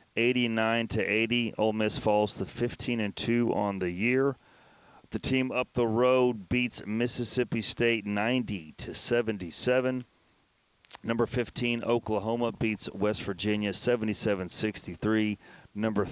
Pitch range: 100-120 Hz